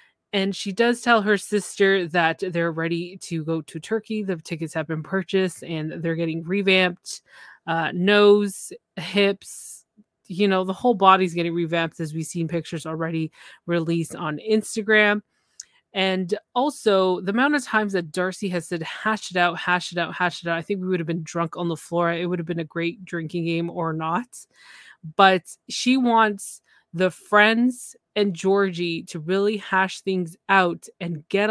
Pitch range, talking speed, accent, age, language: 170-205 Hz, 175 wpm, American, 20-39, English